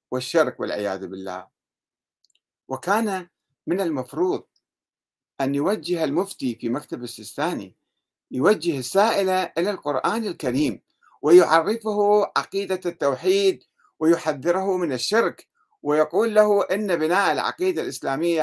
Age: 50-69